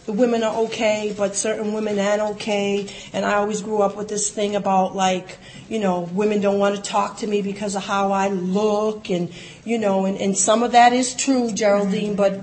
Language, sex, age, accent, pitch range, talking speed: English, female, 40-59, American, 200-250 Hz, 215 wpm